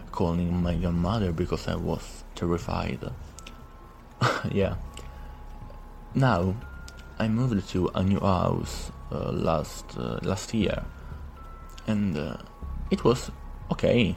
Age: 20-39